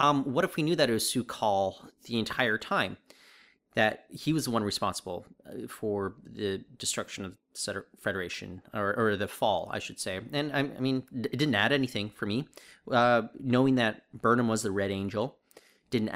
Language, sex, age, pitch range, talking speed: English, male, 30-49, 105-160 Hz, 185 wpm